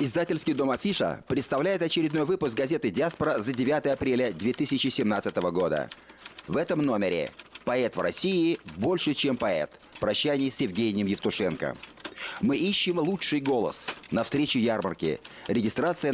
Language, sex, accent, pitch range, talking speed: Russian, male, native, 125-165 Hz, 125 wpm